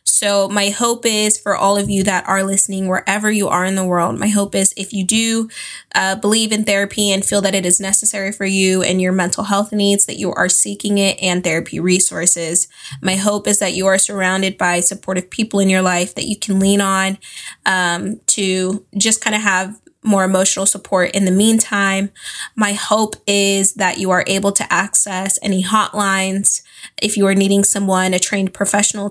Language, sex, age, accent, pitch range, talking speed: English, female, 10-29, American, 185-210 Hz, 200 wpm